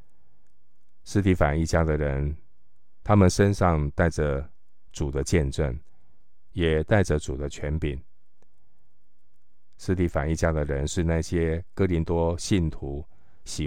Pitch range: 75-90 Hz